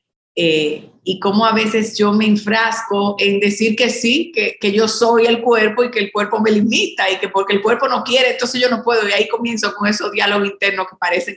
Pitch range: 185-225 Hz